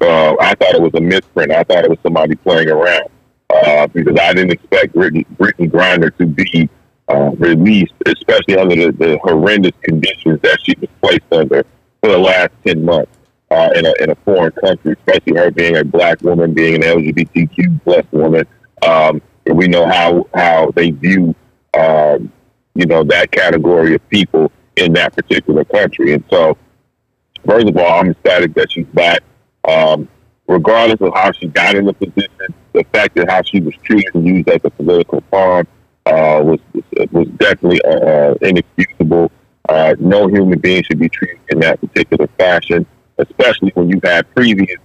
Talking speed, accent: 175 wpm, American